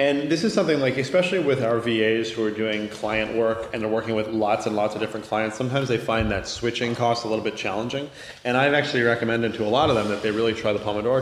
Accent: American